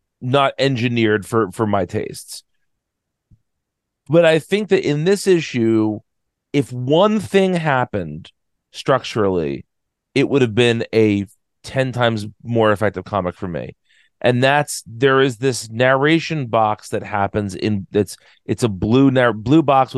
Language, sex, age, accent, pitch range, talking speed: English, male, 40-59, American, 110-145 Hz, 140 wpm